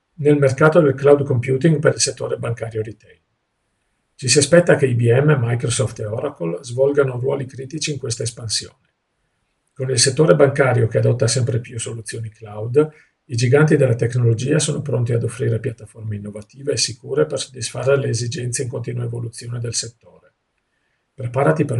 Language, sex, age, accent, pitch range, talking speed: Italian, male, 50-69, native, 115-140 Hz, 155 wpm